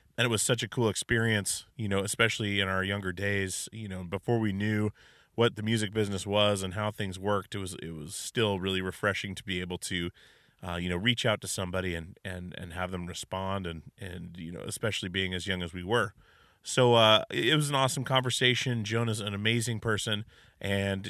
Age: 30-49